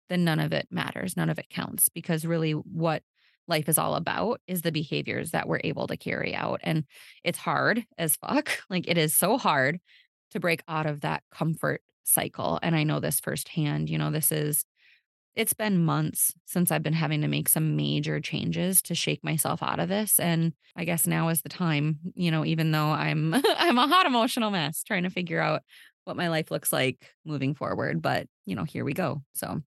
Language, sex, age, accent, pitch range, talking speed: English, female, 20-39, American, 160-195 Hz, 210 wpm